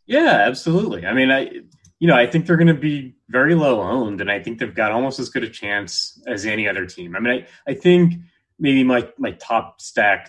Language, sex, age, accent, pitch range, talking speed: English, male, 30-49, American, 90-120 Hz, 235 wpm